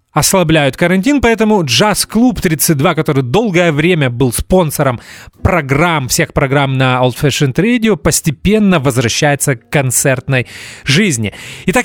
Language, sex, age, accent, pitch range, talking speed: Russian, male, 30-49, native, 130-180 Hz, 120 wpm